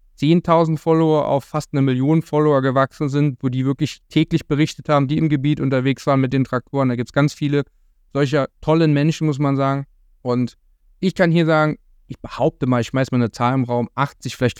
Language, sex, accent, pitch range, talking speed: German, male, German, 130-170 Hz, 210 wpm